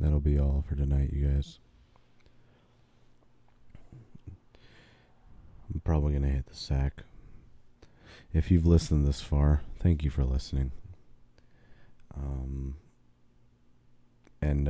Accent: American